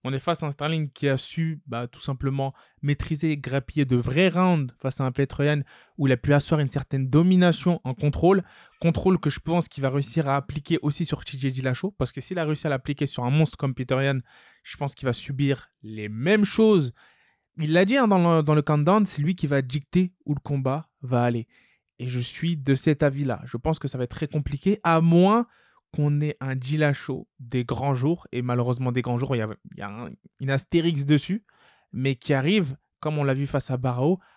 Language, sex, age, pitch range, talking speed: French, male, 20-39, 130-170 Hz, 225 wpm